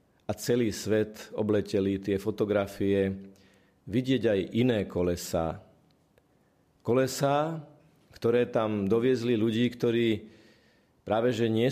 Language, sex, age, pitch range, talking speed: Slovak, male, 40-59, 100-110 Hz, 95 wpm